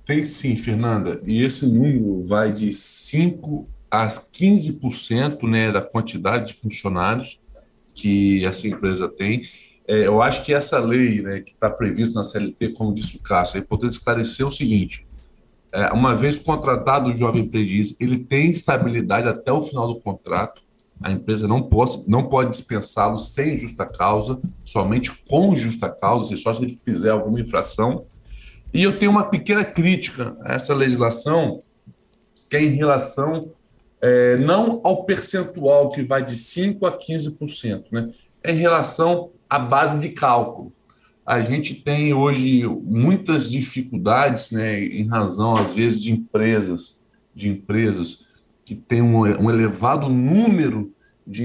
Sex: male